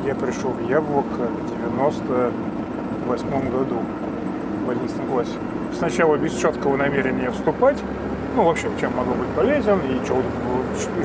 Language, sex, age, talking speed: Russian, male, 30-49, 135 wpm